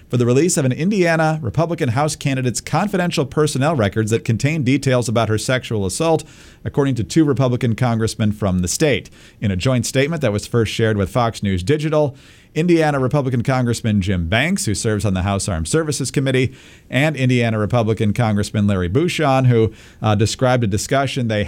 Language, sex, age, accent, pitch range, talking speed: English, male, 50-69, American, 110-140 Hz, 180 wpm